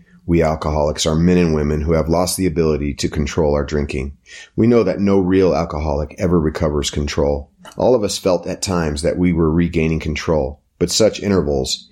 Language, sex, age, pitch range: English, male, 30-49, 75-90 Hz